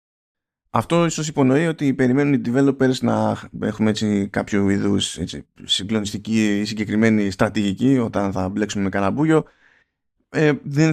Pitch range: 105-130 Hz